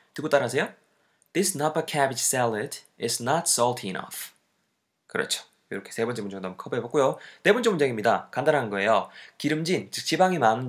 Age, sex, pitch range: 20-39, male, 115-160 Hz